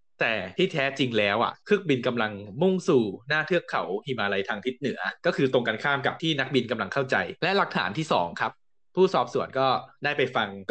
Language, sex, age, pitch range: Thai, male, 20-39, 110-155 Hz